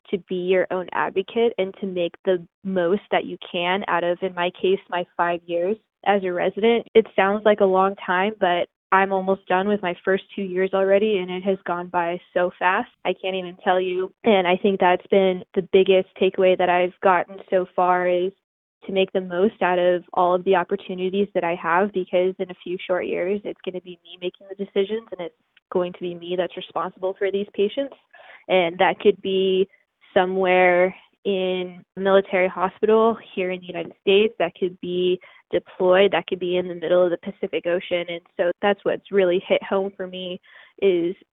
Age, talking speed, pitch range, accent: 10-29, 205 wpm, 180-195 Hz, American